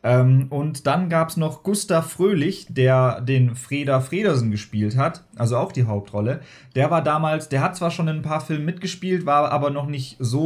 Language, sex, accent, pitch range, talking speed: German, male, German, 125-160 Hz, 195 wpm